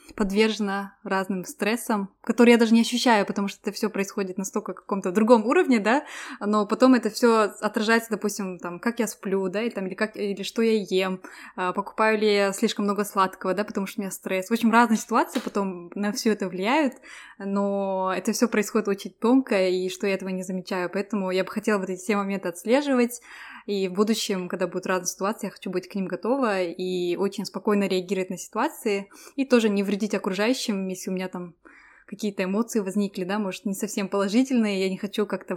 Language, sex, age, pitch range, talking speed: Russian, female, 20-39, 190-230 Hz, 200 wpm